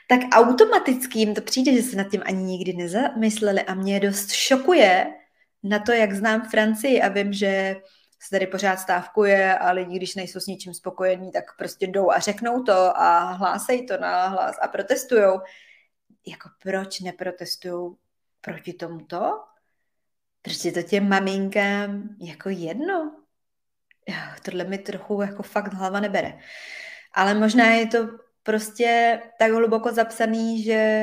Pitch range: 185-225 Hz